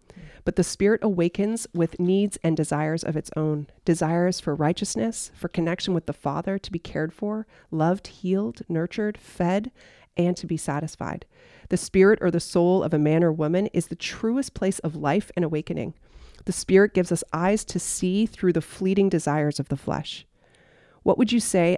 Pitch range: 155-185 Hz